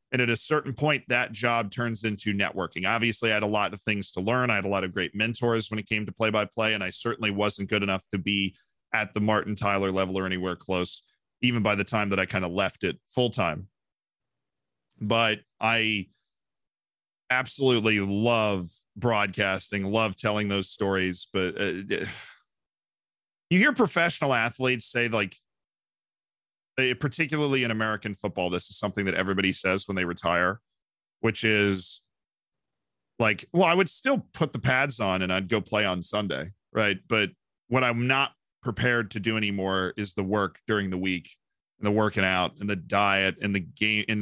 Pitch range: 100-120 Hz